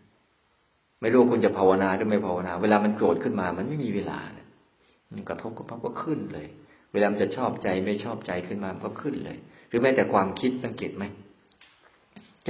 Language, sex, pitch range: Thai, male, 95-115 Hz